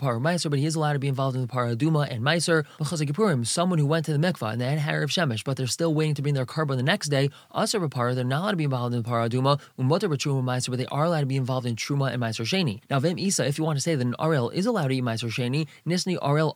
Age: 20-39